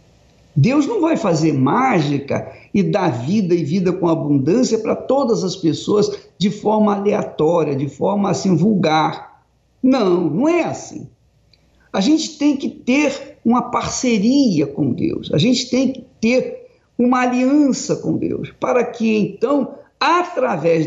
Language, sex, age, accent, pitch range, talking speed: Portuguese, male, 50-69, Brazilian, 165-260 Hz, 140 wpm